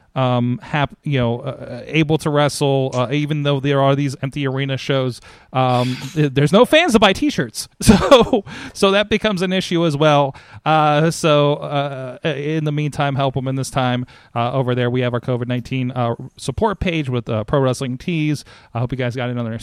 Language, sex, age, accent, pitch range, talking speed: English, male, 30-49, American, 125-150 Hz, 200 wpm